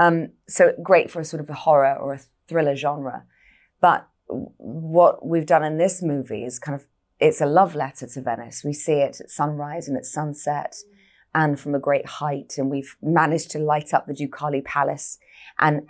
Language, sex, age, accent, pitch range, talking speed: English, female, 20-39, British, 135-160 Hz, 195 wpm